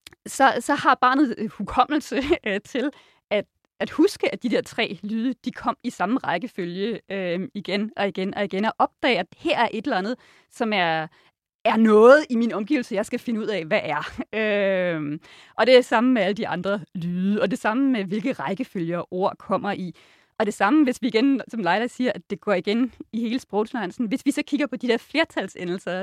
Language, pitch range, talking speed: Danish, 190-245 Hz, 210 wpm